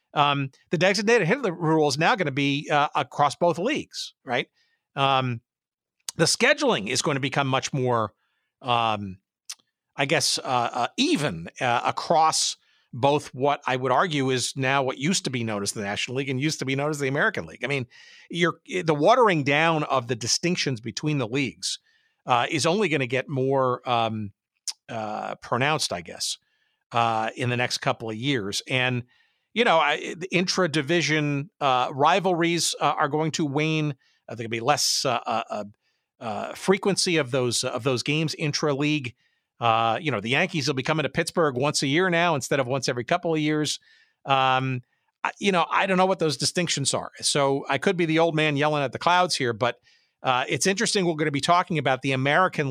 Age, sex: 50-69, male